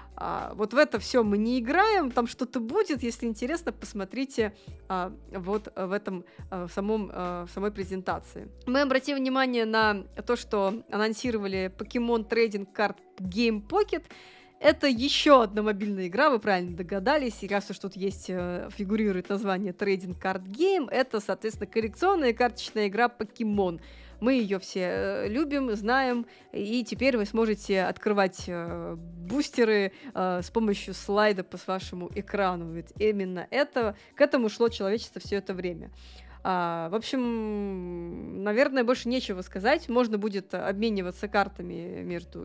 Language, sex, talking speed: Russian, female, 135 wpm